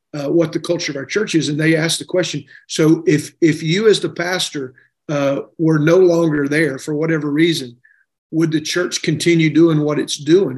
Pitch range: 145-170 Hz